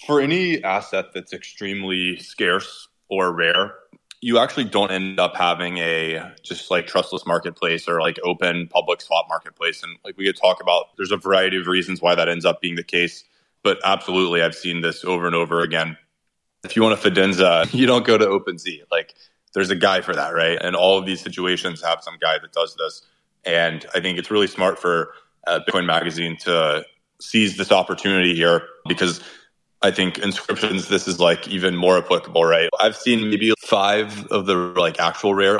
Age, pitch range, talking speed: 20-39, 90-105 Hz, 190 wpm